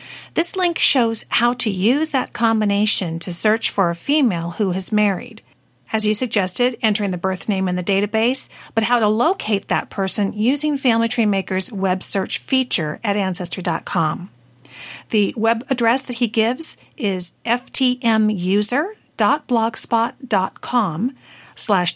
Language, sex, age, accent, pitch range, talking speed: English, female, 50-69, American, 185-255 Hz, 135 wpm